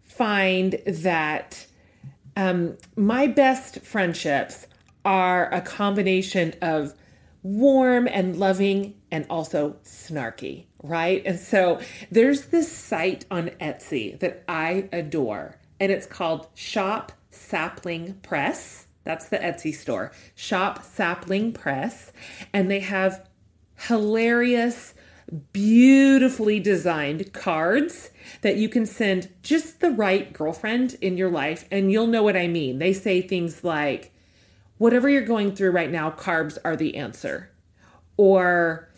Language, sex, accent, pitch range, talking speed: English, female, American, 165-230 Hz, 120 wpm